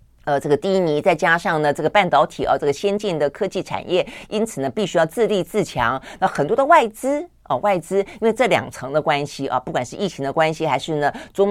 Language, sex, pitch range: Chinese, female, 145-200 Hz